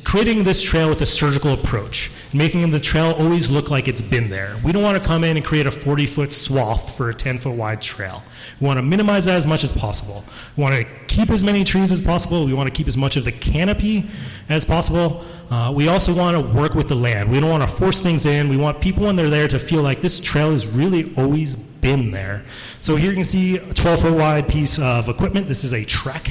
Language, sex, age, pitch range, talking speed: English, male, 30-49, 120-155 Hz, 245 wpm